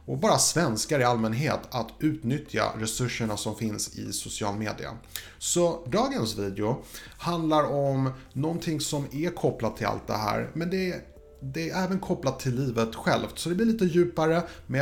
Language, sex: Swedish, male